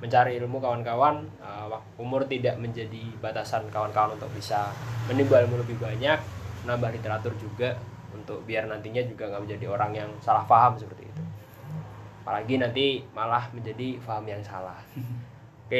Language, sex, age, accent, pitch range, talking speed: Indonesian, male, 20-39, native, 110-125 Hz, 145 wpm